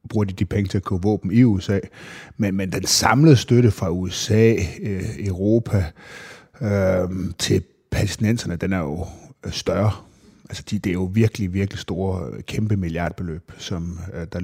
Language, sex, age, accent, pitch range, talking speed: Danish, male, 30-49, native, 90-110 Hz, 160 wpm